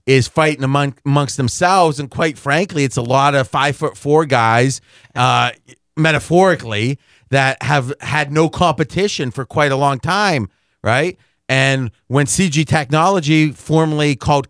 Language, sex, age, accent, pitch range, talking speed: English, male, 40-59, American, 130-155 Hz, 145 wpm